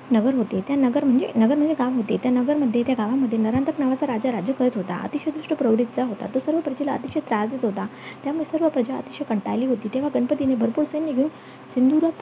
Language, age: Hindi, 20-39